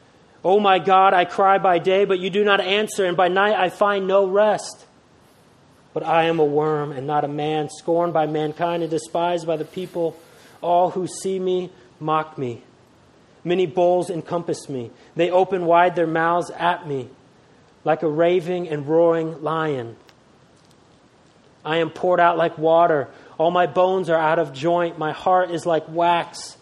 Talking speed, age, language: 175 wpm, 30-49, English